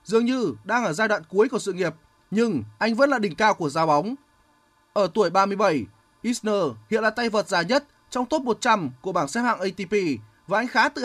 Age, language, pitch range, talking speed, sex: 20-39, Vietnamese, 170-240 Hz, 225 wpm, male